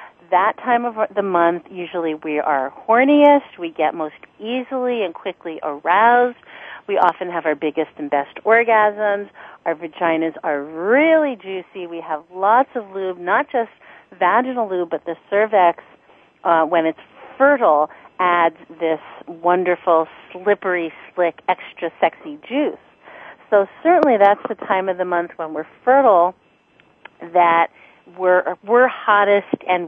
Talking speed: 140 wpm